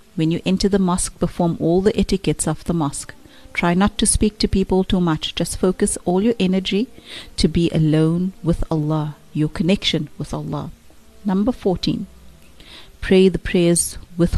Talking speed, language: 165 wpm, English